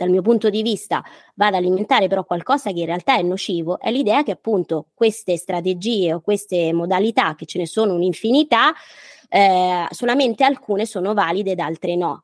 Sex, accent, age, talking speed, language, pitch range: female, native, 20-39, 175 wpm, Italian, 175-210 Hz